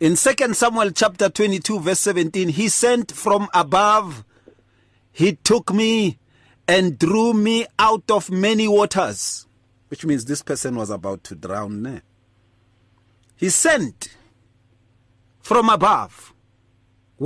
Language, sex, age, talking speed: English, male, 40-59, 115 wpm